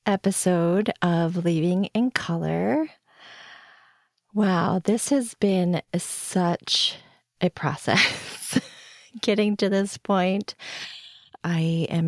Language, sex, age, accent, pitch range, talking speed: English, female, 30-49, American, 160-195 Hz, 95 wpm